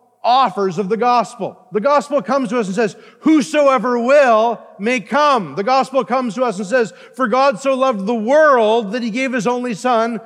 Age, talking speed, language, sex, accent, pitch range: 40-59, 200 wpm, English, male, American, 195-260 Hz